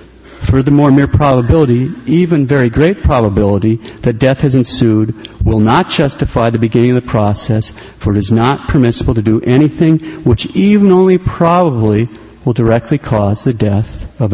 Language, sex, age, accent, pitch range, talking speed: English, male, 50-69, American, 110-140 Hz, 155 wpm